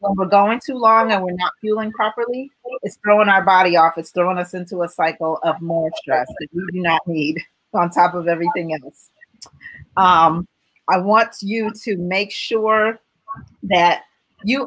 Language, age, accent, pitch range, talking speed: English, 40-59, American, 180-230 Hz, 175 wpm